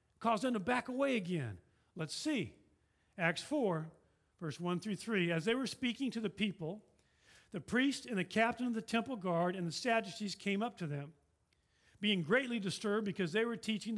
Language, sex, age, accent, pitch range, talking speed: English, male, 50-69, American, 175-230 Hz, 190 wpm